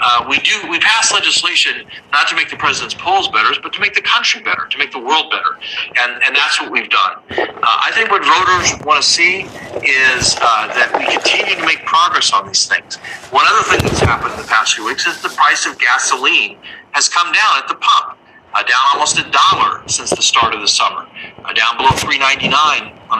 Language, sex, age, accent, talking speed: English, male, 40-59, American, 230 wpm